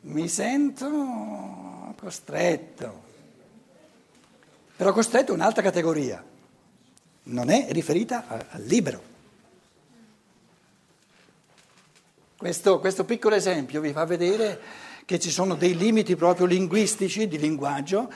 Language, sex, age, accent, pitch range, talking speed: Italian, male, 60-79, native, 150-205 Hz, 100 wpm